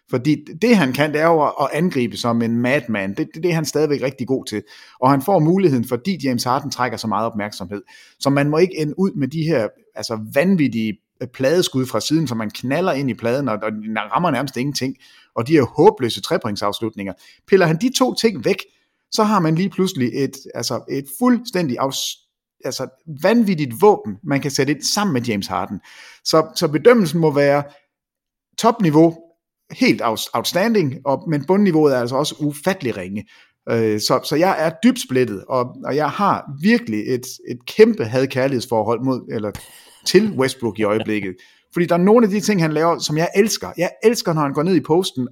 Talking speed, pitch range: 185 wpm, 125-180 Hz